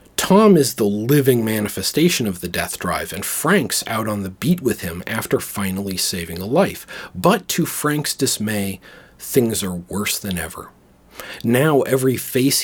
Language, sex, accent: English, male, American